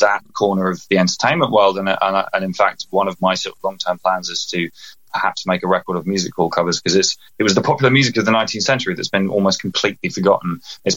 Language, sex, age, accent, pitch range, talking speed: English, male, 20-39, British, 95-110 Hz, 240 wpm